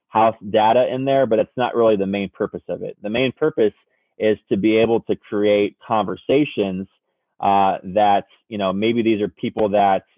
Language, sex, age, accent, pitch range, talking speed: English, male, 20-39, American, 100-120 Hz, 190 wpm